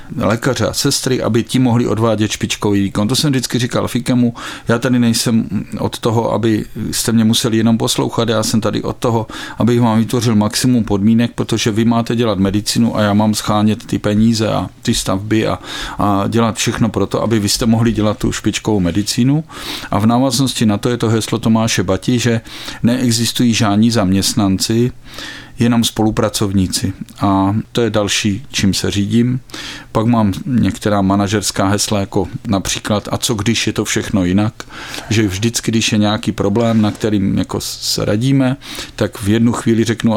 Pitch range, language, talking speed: 105-120 Hz, Czech, 170 wpm